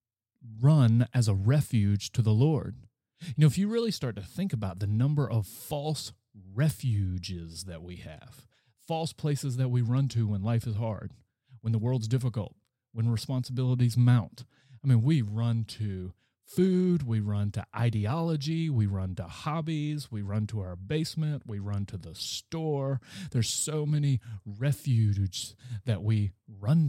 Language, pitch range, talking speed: English, 105-130 Hz, 160 wpm